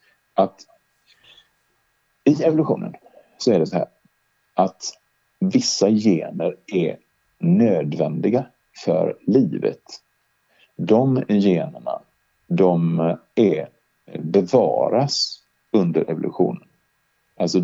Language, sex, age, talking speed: Swedish, male, 50-69, 80 wpm